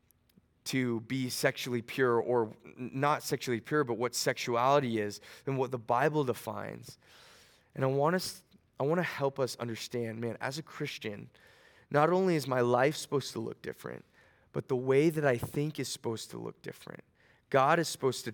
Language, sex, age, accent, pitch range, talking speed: English, male, 20-39, American, 115-135 Hz, 175 wpm